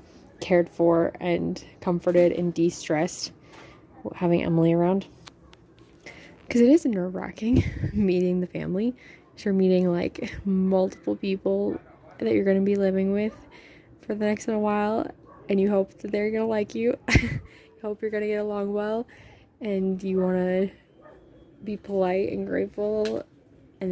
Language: English